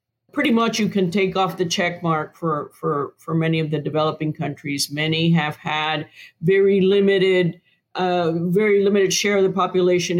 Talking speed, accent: 165 wpm, American